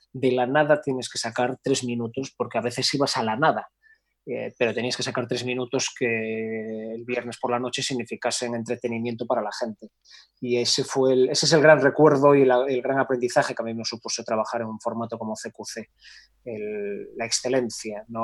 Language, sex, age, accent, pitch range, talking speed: Spanish, male, 20-39, Spanish, 115-140 Hz, 190 wpm